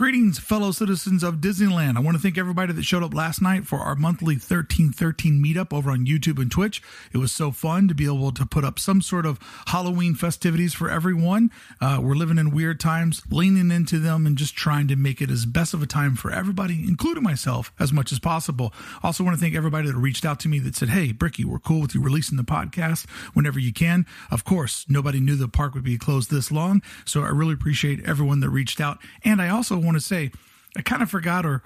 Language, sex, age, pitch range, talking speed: English, male, 40-59, 140-175 Hz, 235 wpm